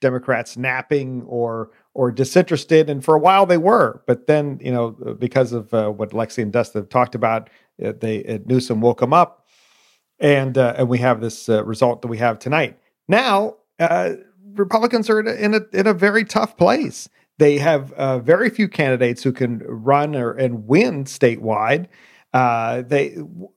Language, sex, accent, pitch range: English, male, American, 125-170 Hz